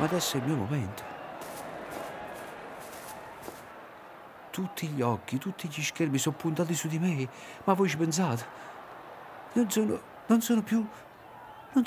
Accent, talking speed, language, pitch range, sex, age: native, 130 wpm, Italian, 145-200 Hz, male, 50-69